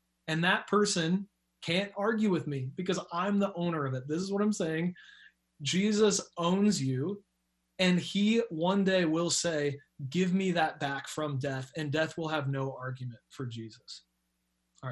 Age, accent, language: 30-49, American, English